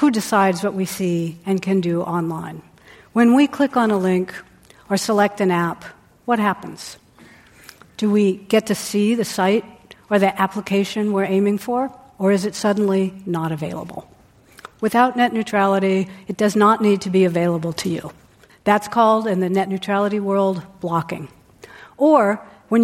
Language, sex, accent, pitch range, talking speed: English, female, American, 190-225 Hz, 165 wpm